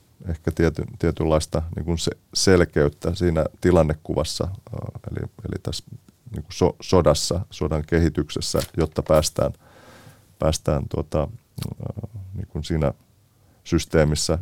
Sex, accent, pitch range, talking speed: male, native, 80-100 Hz, 90 wpm